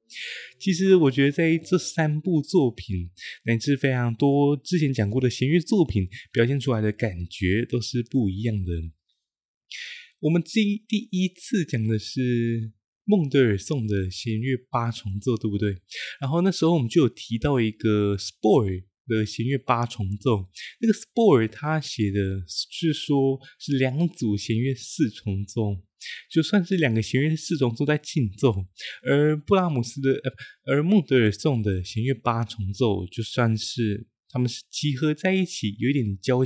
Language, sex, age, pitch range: Chinese, male, 20-39, 105-150 Hz